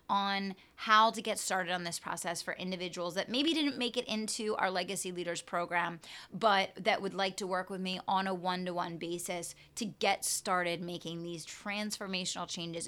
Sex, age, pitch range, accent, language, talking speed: female, 30-49, 175-215 Hz, American, English, 180 wpm